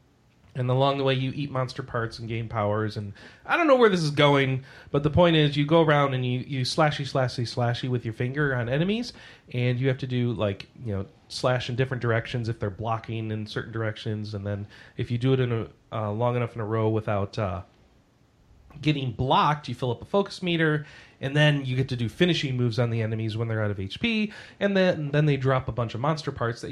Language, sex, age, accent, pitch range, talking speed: English, male, 30-49, American, 110-140 Hz, 240 wpm